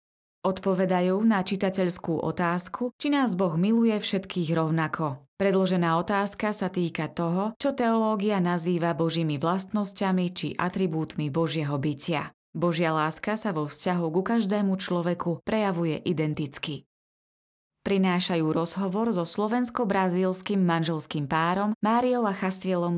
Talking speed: 115 wpm